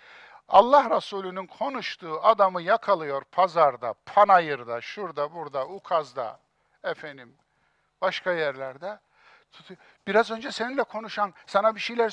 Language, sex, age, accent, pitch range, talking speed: Turkish, male, 60-79, native, 165-240 Hz, 100 wpm